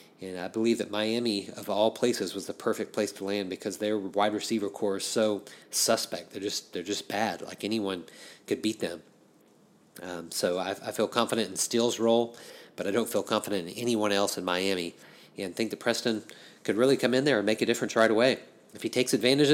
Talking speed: 210 wpm